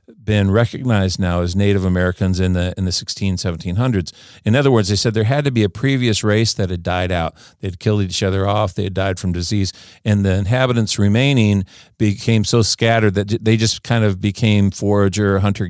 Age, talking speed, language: 50-69, 210 wpm, English